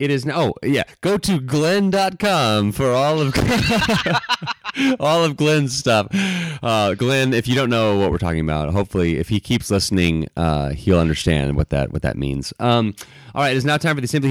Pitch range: 90-130 Hz